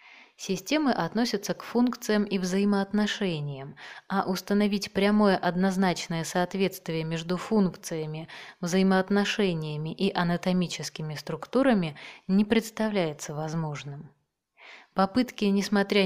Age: 20-39